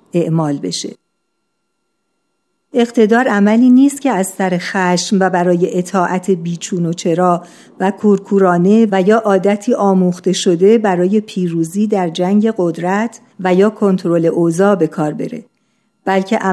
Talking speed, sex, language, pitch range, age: 125 wpm, female, Persian, 180-225 Hz, 50-69